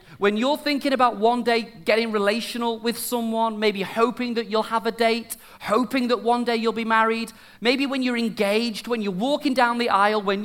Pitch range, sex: 155-230 Hz, male